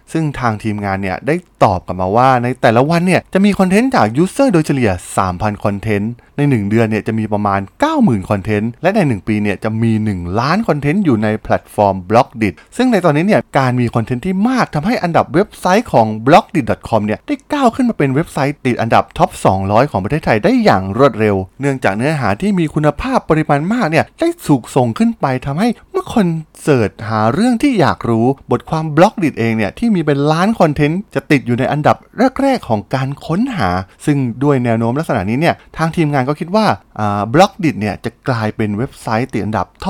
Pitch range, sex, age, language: 110-165 Hz, male, 20-39, Thai